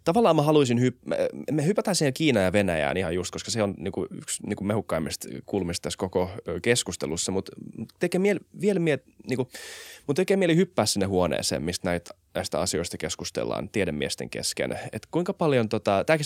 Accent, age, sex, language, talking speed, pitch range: native, 20-39, male, Finnish, 165 wpm, 90-120 Hz